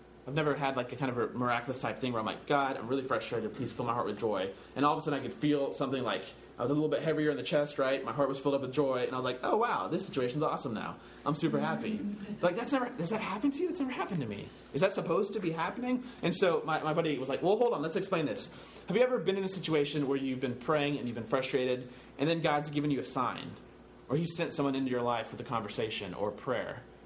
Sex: male